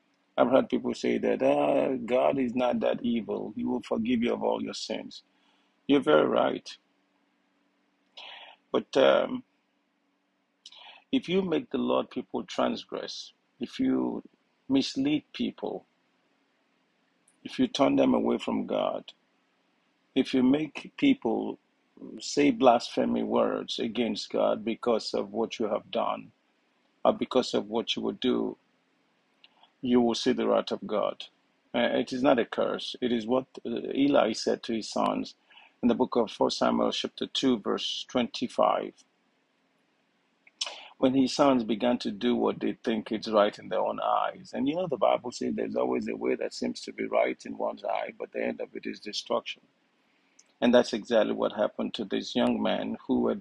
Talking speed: 165 wpm